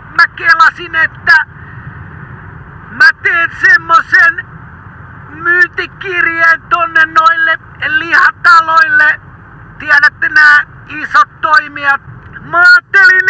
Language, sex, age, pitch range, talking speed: Finnish, male, 50-69, 310-380 Hz, 70 wpm